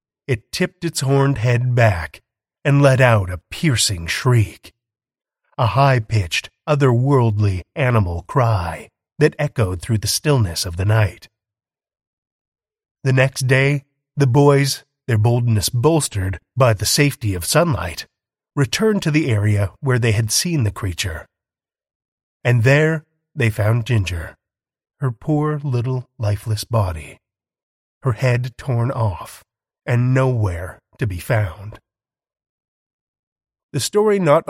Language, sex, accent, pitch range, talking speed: English, male, American, 105-145 Hz, 120 wpm